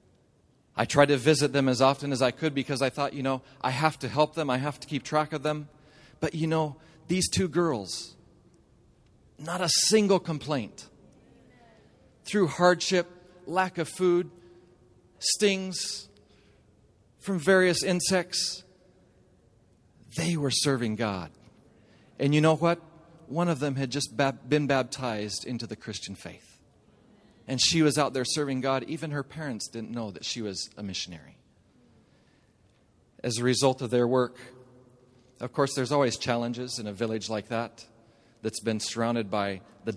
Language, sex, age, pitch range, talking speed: English, male, 40-59, 115-155 Hz, 155 wpm